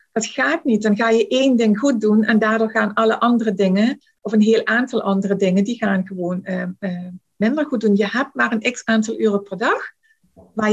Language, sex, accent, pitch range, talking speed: Dutch, female, Dutch, 195-220 Hz, 225 wpm